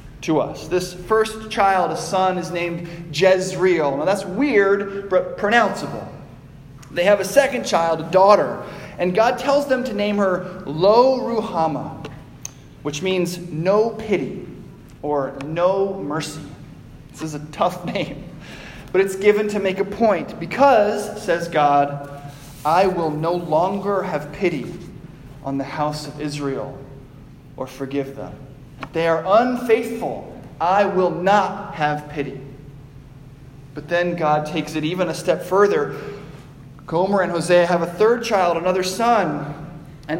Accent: American